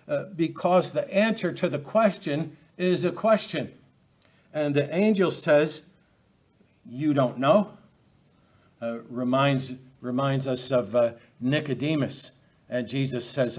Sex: male